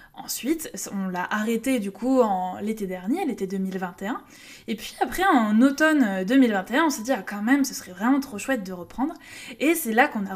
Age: 20-39